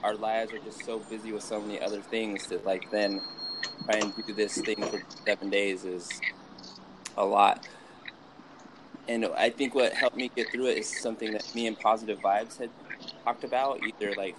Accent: American